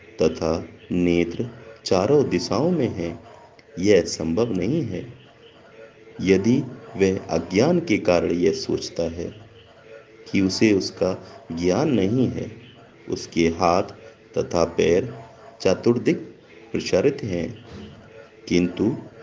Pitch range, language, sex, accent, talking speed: 90-115 Hz, Hindi, male, native, 100 wpm